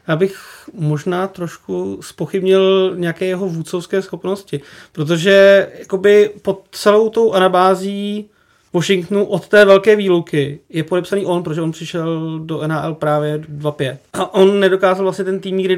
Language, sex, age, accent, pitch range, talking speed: Czech, male, 30-49, native, 160-190 Hz, 135 wpm